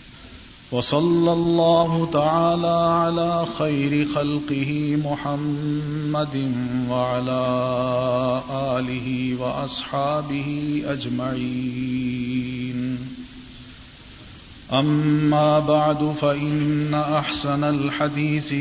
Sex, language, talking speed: male, Urdu, 50 wpm